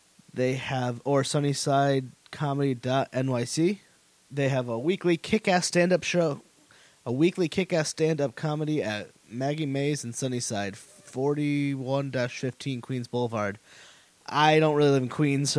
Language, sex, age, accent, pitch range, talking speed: English, male, 20-39, American, 125-150 Hz, 115 wpm